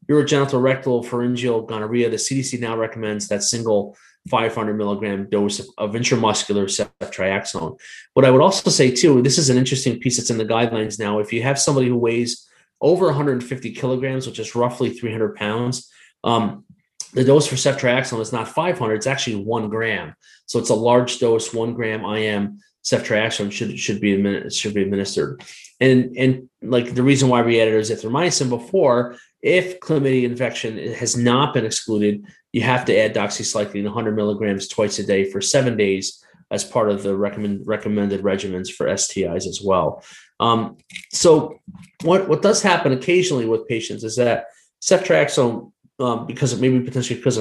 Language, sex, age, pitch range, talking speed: English, male, 30-49, 110-130 Hz, 170 wpm